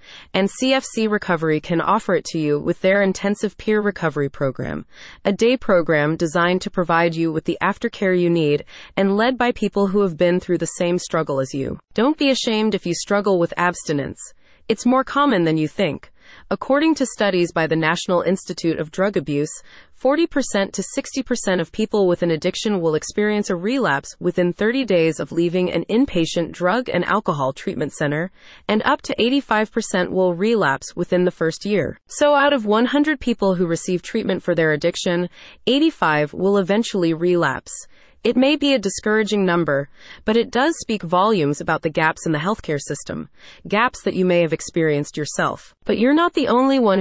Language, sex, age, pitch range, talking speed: English, female, 30-49, 170-220 Hz, 185 wpm